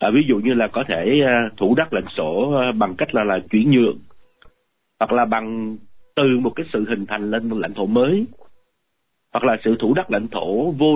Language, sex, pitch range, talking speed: Vietnamese, male, 110-150 Hz, 215 wpm